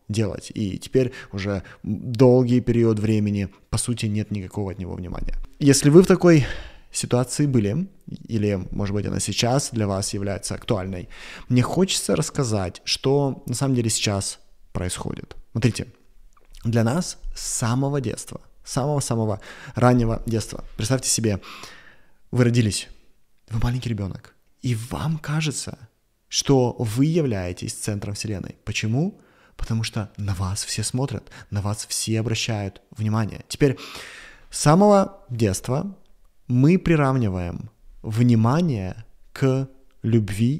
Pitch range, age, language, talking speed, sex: 105-135 Hz, 20-39, Russian, 125 wpm, male